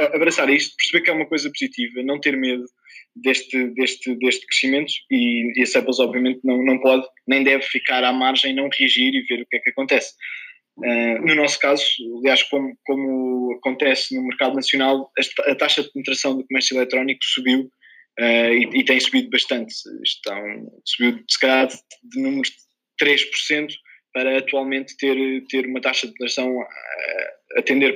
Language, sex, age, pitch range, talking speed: English, male, 20-39, 130-150 Hz, 175 wpm